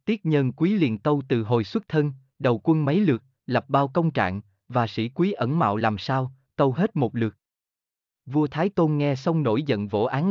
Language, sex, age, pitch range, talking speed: Vietnamese, male, 20-39, 115-160 Hz, 215 wpm